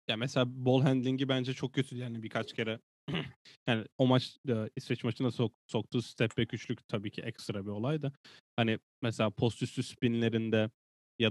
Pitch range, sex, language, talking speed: 110-130 Hz, male, Turkish, 165 wpm